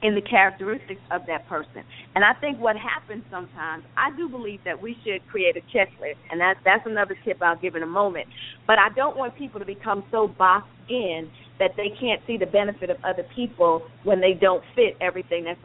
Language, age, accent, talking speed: English, 40-59, American, 215 wpm